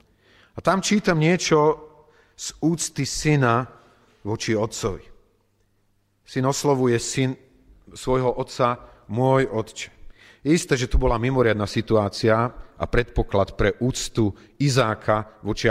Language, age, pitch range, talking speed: Slovak, 40-59, 105-130 Hz, 110 wpm